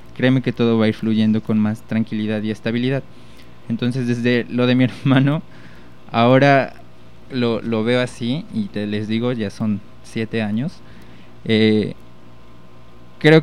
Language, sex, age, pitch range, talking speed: Spanish, male, 20-39, 110-125 Hz, 145 wpm